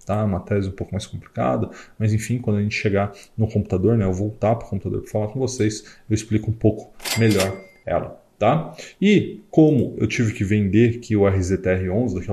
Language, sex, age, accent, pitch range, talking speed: Portuguese, male, 20-39, Brazilian, 105-130 Hz, 200 wpm